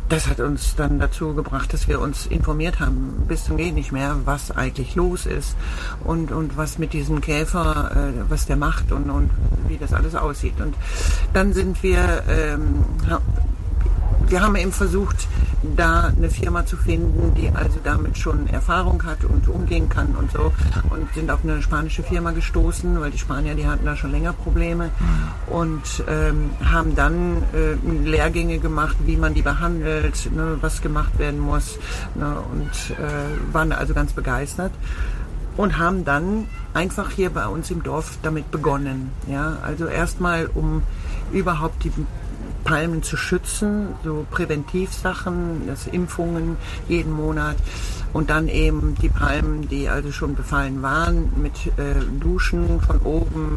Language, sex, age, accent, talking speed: German, female, 60-79, German, 155 wpm